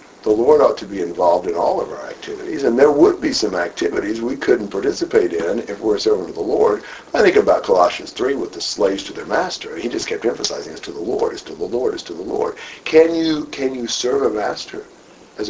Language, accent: English, American